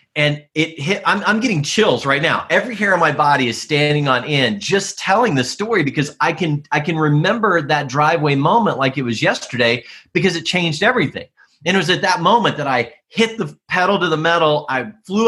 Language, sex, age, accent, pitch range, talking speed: English, male, 30-49, American, 135-185 Hz, 215 wpm